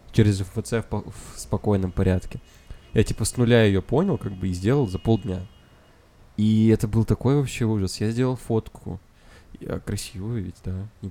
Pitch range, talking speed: 95-120 Hz, 180 wpm